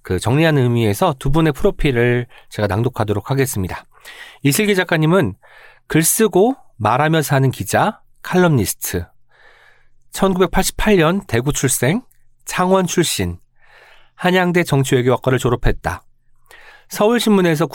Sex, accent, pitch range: male, native, 120-180 Hz